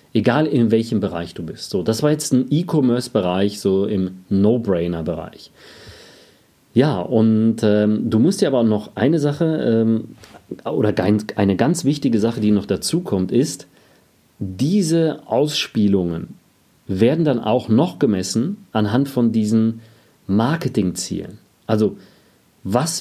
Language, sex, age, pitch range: German, male, 40-59, 105-140 Hz